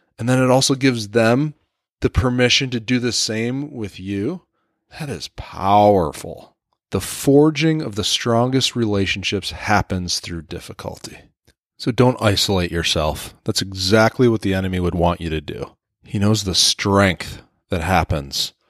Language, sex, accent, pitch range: English, male, American, 95-115 Hz